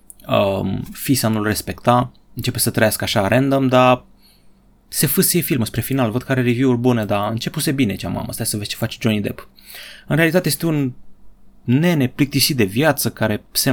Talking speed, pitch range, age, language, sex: 185 wpm, 110-140 Hz, 30-49, Romanian, male